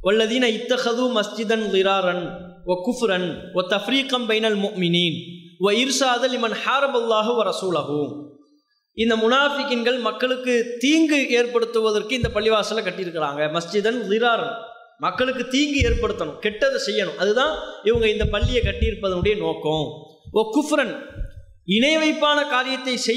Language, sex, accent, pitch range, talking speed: English, male, Indian, 200-255 Hz, 120 wpm